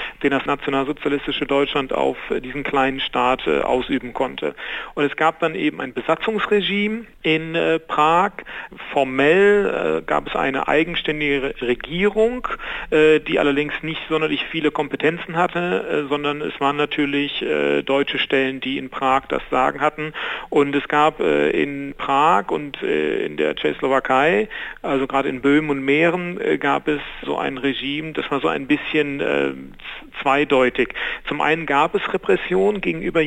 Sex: male